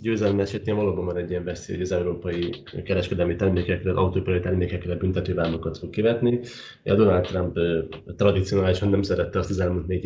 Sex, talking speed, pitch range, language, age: male, 160 wpm, 85-95 Hz, Hungarian, 30-49